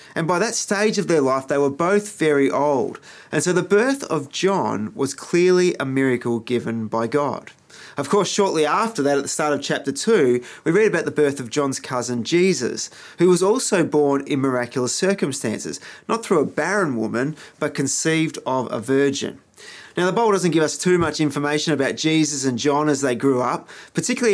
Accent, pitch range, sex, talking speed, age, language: Australian, 135-175 Hz, male, 195 wpm, 30-49, English